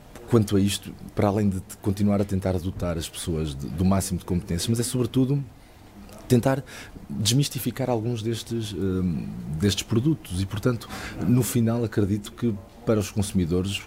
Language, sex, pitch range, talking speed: Portuguese, male, 95-115 Hz, 145 wpm